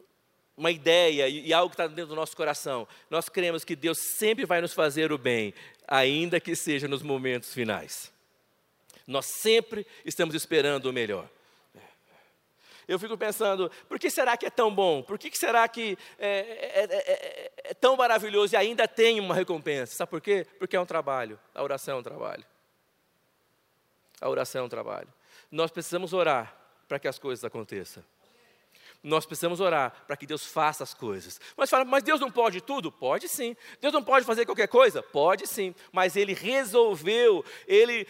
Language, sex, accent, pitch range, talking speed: Portuguese, male, Brazilian, 165-265 Hz, 175 wpm